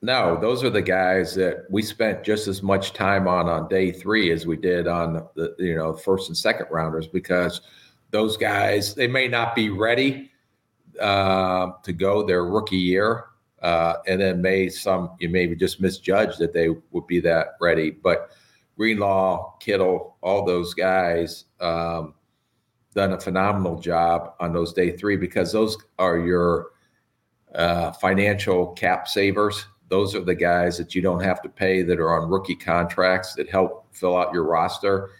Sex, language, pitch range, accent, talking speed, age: male, English, 85-100 Hz, American, 170 wpm, 50-69